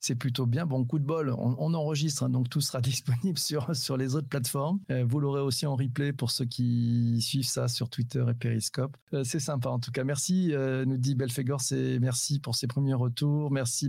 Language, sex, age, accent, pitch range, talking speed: French, male, 40-59, French, 120-140 Hz, 225 wpm